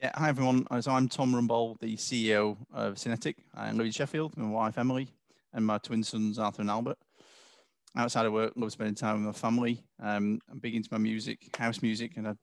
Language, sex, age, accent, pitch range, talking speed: English, male, 20-39, British, 110-130 Hz, 210 wpm